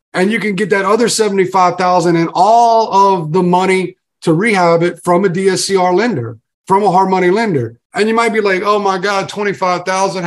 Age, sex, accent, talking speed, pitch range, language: 30-49, male, American, 195 wpm, 170-210 Hz, English